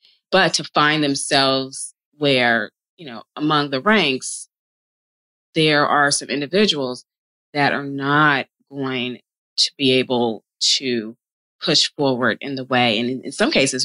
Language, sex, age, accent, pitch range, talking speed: English, female, 30-49, American, 130-160 Hz, 135 wpm